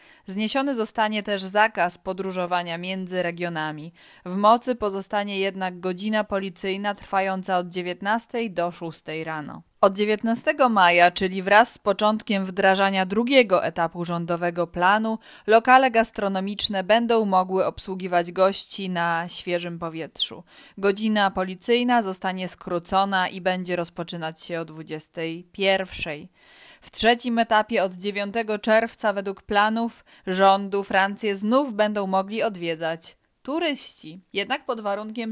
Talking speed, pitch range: 115 wpm, 180-220 Hz